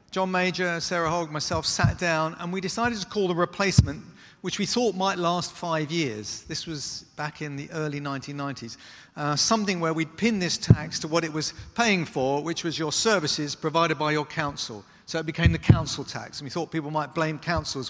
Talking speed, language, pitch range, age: 210 wpm, English, 150-190 Hz, 40-59